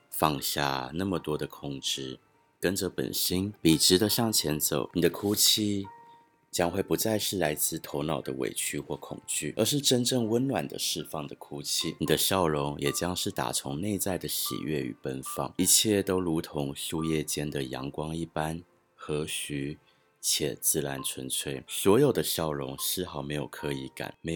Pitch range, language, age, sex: 70-95 Hz, Chinese, 30-49, male